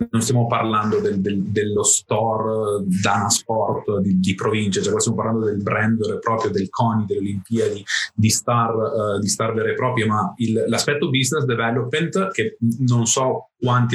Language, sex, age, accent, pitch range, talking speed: Italian, male, 30-49, native, 110-130 Hz, 175 wpm